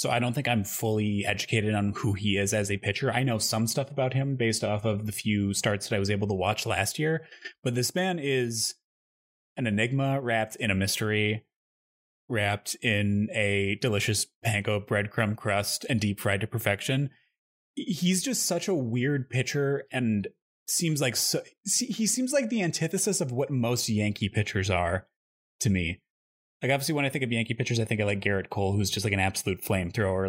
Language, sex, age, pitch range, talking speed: English, male, 30-49, 100-130 Hz, 195 wpm